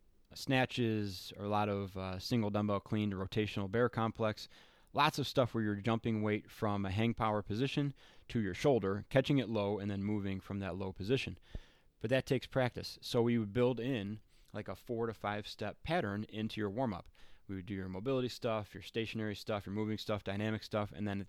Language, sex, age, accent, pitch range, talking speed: English, male, 20-39, American, 100-115 Hz, 210 wpm